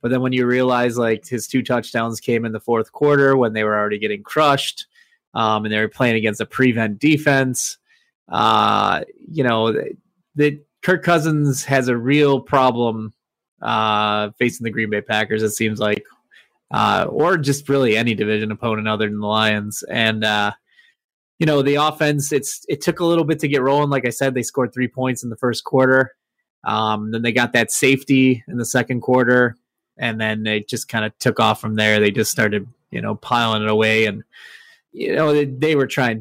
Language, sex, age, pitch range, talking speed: English, male, 20-39, 110-135 Hz, 200 wpm